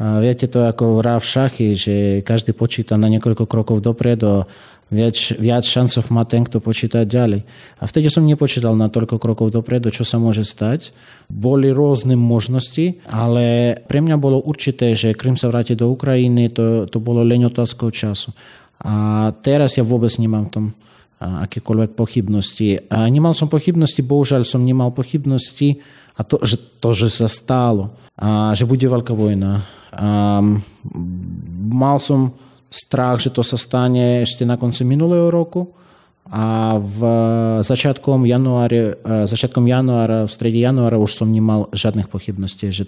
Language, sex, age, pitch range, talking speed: Slovak, male, 30-49, 110-130 Hz, 150 wpm